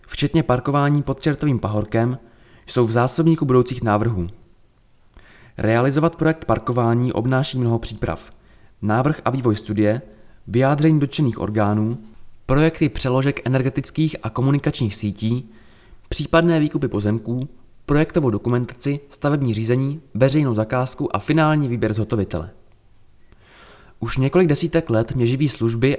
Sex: male